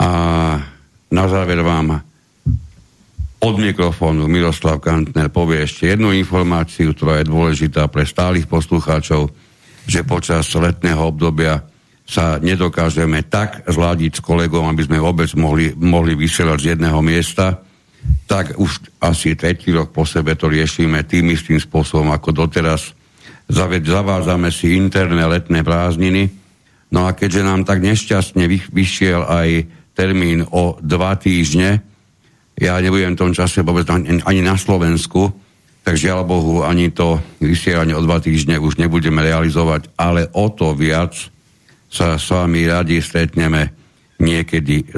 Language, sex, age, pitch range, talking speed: Slovak, male, 60-79, 80-90 Hz, 135 wpm